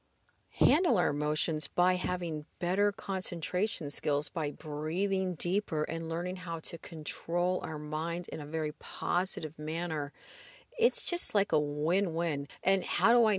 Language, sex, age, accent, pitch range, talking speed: English, female, 50-69, American, 155-200 Hz, 145 wpm